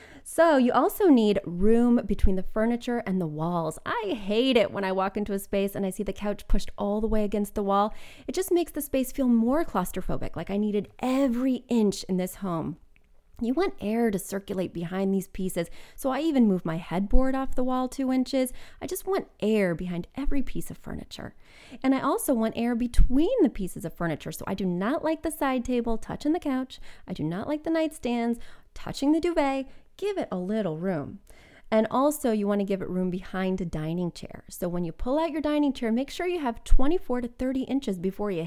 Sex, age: female, 20-39